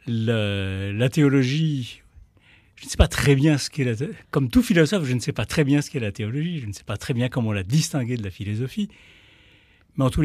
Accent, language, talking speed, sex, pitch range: French, French, 240 wpm, male, 105-145 Hz